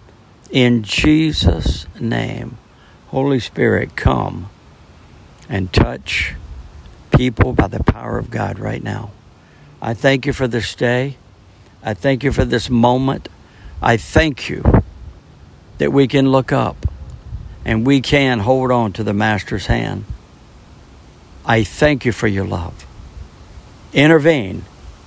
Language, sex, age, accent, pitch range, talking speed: English, male, 60-79, American, 90-125 Hz, 125 wpm